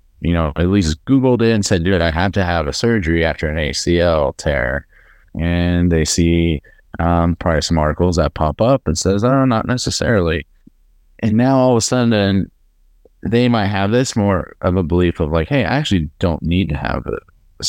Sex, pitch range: male, 80-105 Hz